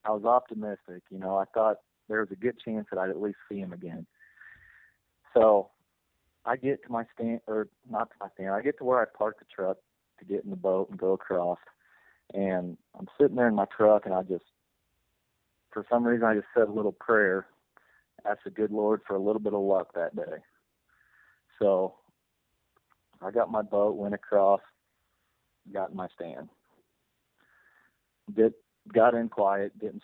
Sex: male